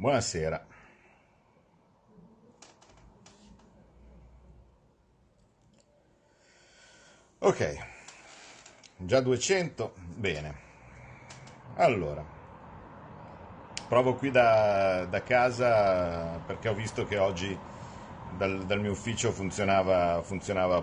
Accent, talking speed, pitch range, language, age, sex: native, 65 wpm, 85-130 Hz, Italian, 50-69, male